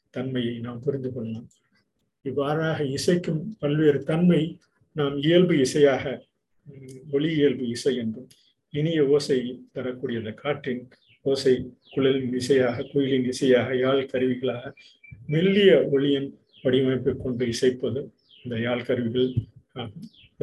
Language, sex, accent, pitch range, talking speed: Tamil, male, native, 125-150 Hz, 95 wpm